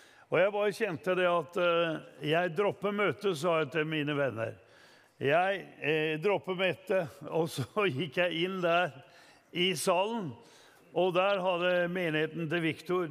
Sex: male